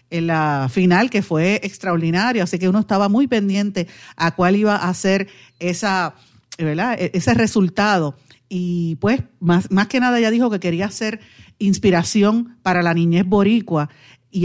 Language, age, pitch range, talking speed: Spanish, 50-69, 175-215 Hz, 160 wpm